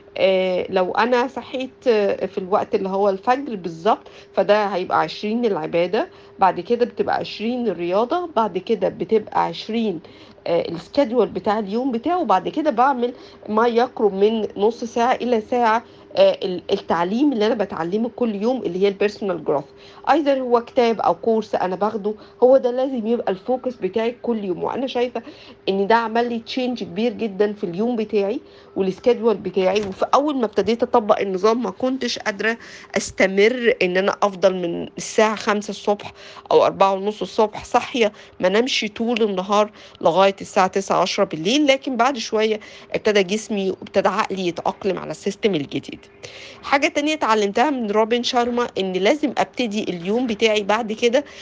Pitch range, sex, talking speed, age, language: 195-245 Hz, female, 155 wpm, 50-69, Arabic